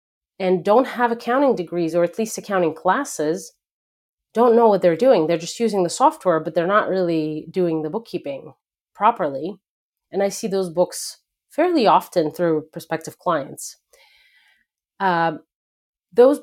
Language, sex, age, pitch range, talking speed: English, female, 30-49, 175-250 Hz, 145 wpm